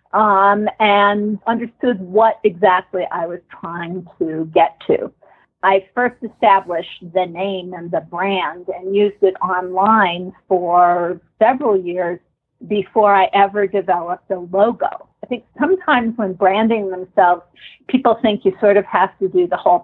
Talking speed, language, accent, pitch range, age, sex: 145 wpm, English, American, 180-215 Hz, 50-69, female